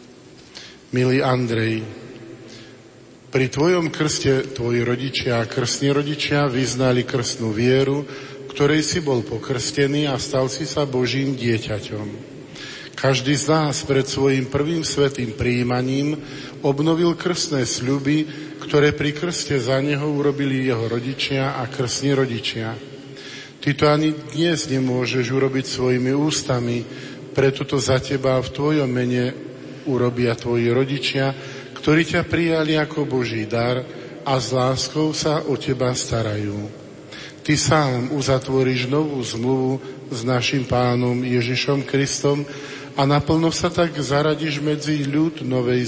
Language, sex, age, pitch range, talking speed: Slovak, male, 50-69, 125-145 Hz, 125 wpm